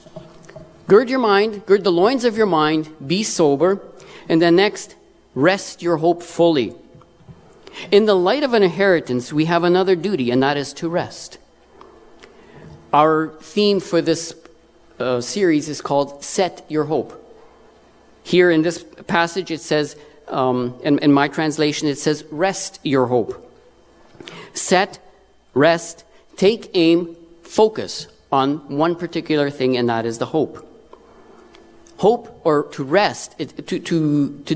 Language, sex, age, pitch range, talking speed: English, male, 50-69, 150-190 Hz, 140 wpm